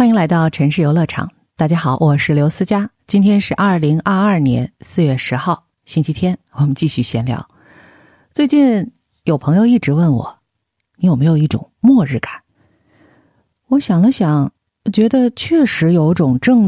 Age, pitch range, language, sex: 50-69, 145-225 Hz, Chinese, female